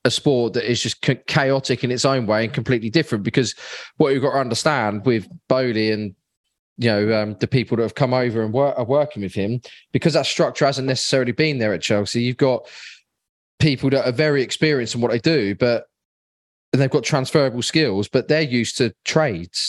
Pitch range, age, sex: 115-140 Hz, 20-39, male